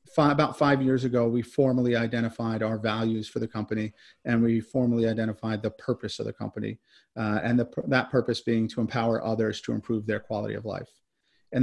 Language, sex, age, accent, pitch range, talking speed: English, male, 40-59, American, 115-135 Hz, 185 wpm